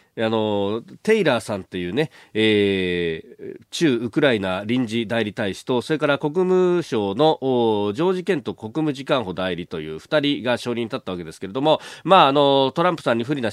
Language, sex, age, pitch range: Japanese, male, 40-59, 110-170 Hz